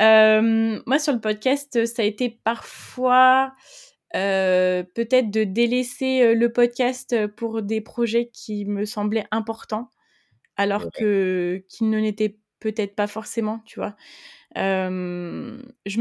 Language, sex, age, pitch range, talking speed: French, female, 20-39, 205-235 Hz, 125 wpm